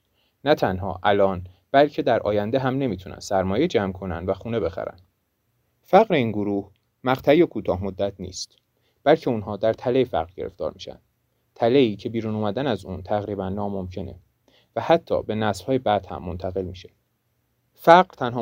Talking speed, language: 150 wpm, Persian